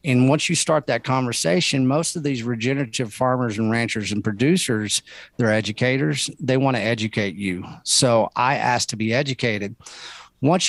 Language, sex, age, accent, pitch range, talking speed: English, male, 40-59, American, 110-135 Hz, 165 wpm